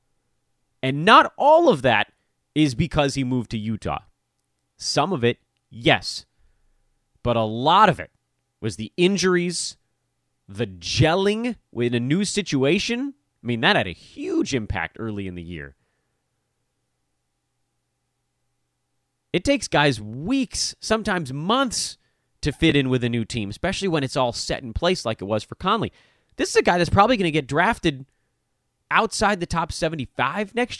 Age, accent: 30-49, American